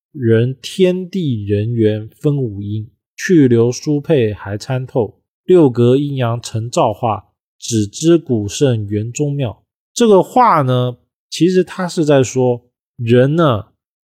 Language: Chinese